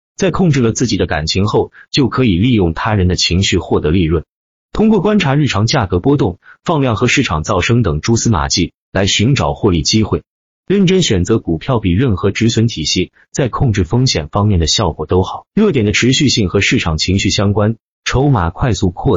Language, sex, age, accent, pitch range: Chinese, male, 30-49, native, 90-125 Hz